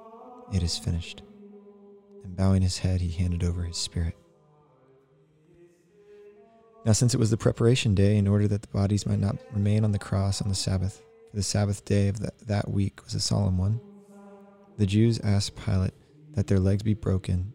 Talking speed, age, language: 185 wpm, 20-39, English